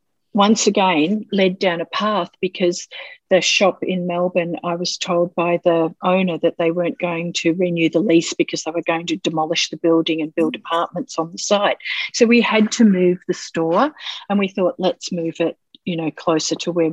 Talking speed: 200 wpm